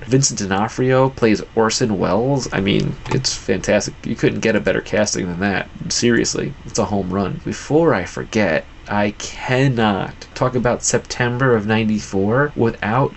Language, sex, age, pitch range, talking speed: English, male, 20-39, 110-140 Hz, 150 wpm